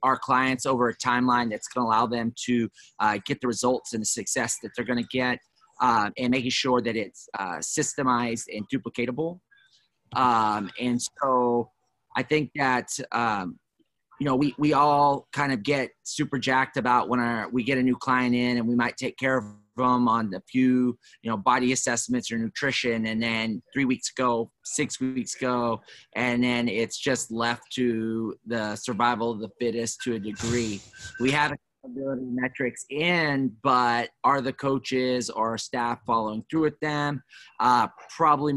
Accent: American